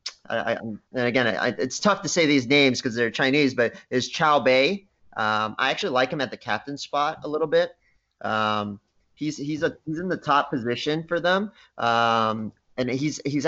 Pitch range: 115-145 Hz